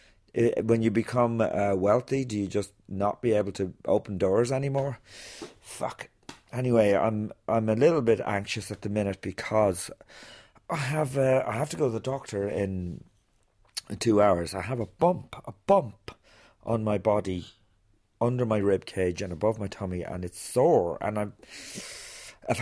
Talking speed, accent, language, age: 165 wpm, British, English, 40-59